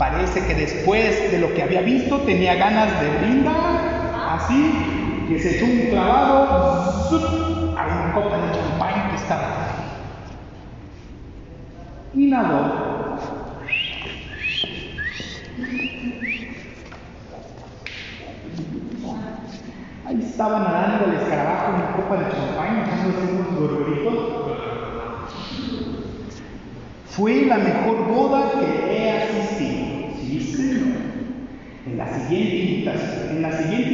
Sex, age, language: male, 50-69, Spanish